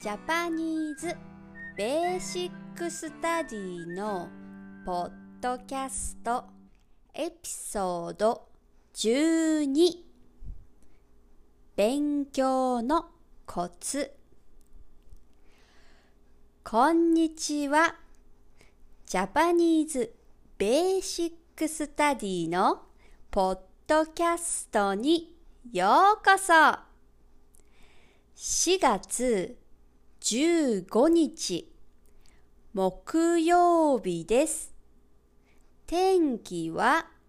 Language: Japanese